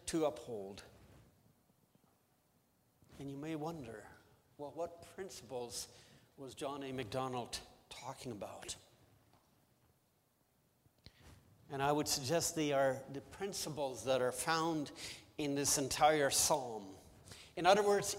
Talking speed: 110 wpm